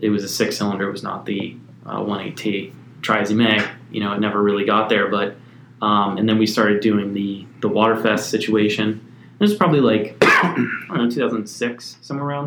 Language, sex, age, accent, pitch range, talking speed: English, male, 20-39, American, 105-120 Hz, 175 wpm